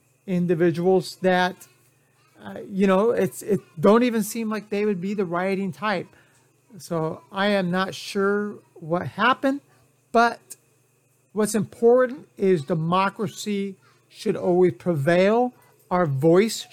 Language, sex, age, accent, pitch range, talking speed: English, male, 40-59, American, 160-205 Hz, 120 wpm